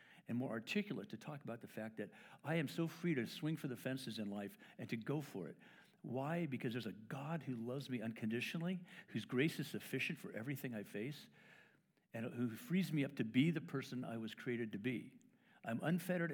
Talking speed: 215 wpm